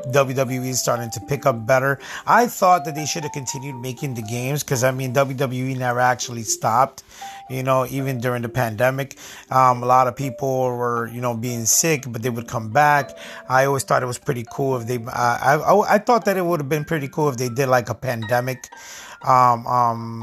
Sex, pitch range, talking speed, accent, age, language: male, 115-130 Hz, 220 wpm, American, 30-49, English